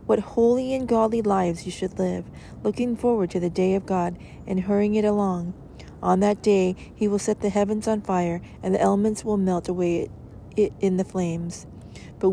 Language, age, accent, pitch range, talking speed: English, 40-59, American, 175-210 Hz, 190 wpm